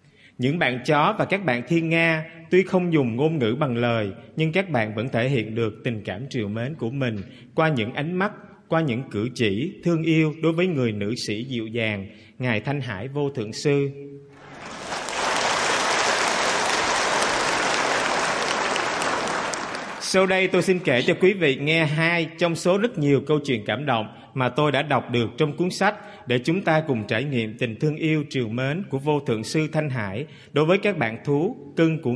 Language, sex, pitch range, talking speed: English, male, 120-160 Hz, 190 wpm